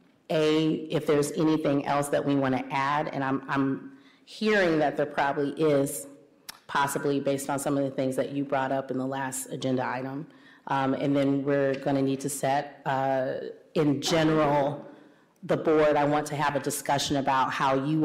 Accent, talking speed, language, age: American, 185 wpm, English, 30-49